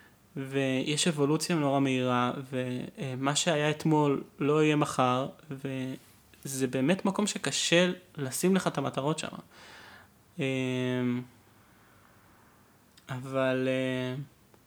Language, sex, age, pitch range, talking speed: Hebrew, male, 20-39, 130-150 Hz, 80 wpm